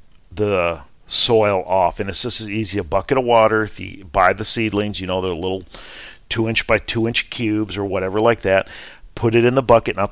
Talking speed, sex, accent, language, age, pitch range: 220 wpm, male, American, English, 40-59, 95-115 Hz